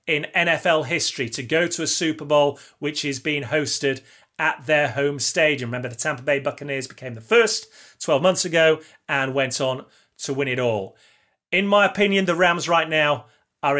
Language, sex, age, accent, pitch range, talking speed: English, male, 30-49, British, 135-185 Hz, 185 wpm